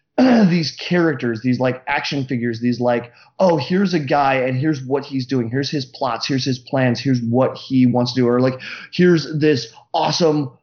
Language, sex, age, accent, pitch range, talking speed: English, male, 30-49, American, 125-155 Hz, 190 wpm